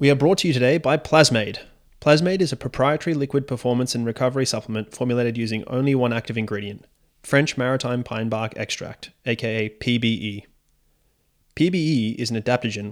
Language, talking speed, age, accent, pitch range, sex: English, 160 wpm, 20-39, Australian, 110-130 Hz, male